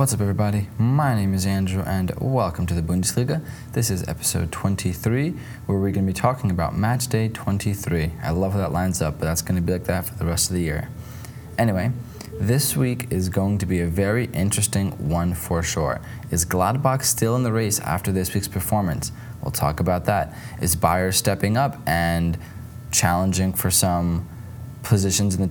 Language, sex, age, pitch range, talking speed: English, male, 20-39, 90-120 Hz, 195 wpm